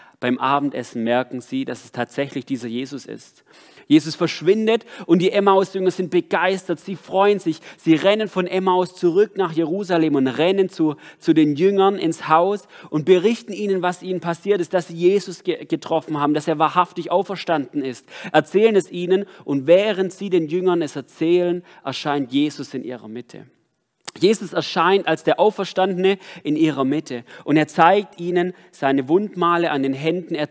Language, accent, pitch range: German, German, 155-185 Hz